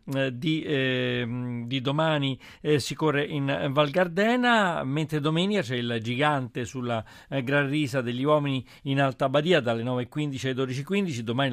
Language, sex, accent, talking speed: Italian, male, native, 150 wpm